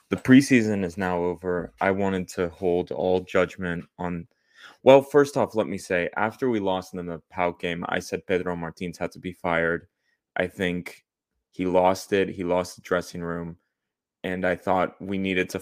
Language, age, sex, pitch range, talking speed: English, 20-39, male, 90-105 Hz, 190 wpm